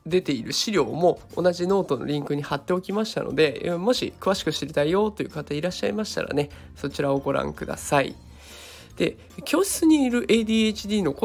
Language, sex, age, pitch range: Japanese, male, 20-39, 140-195 Hz